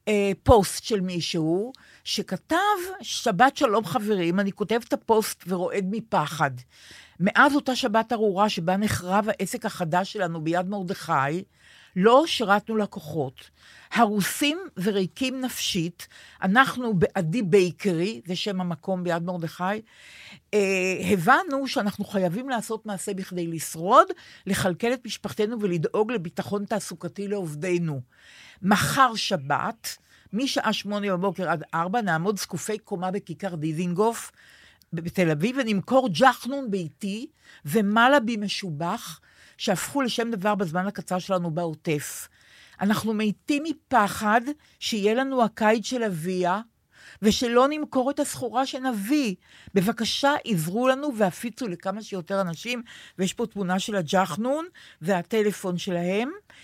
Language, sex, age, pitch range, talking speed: Hebrew, female, 50-69, 185-235 Hz, 110 wpm